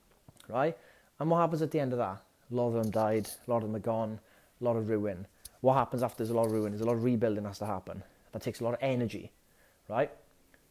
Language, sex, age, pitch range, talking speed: English, male, 30-49, 115-155 Hz, 270 wpm